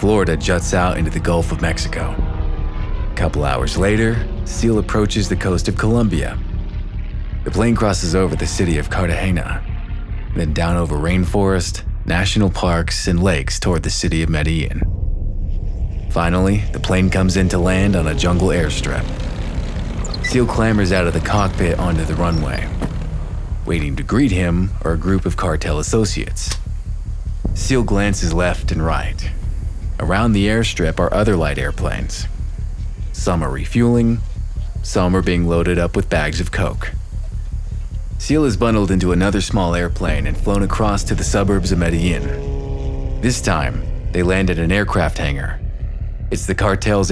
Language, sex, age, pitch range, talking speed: English, male, 30-49, 80-100 Hz, 150 wpm